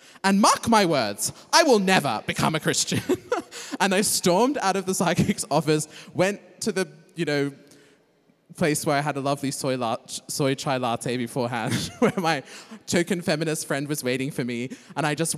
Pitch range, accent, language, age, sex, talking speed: 125-170 Hz, British, English, 20-39, male, 185 wpm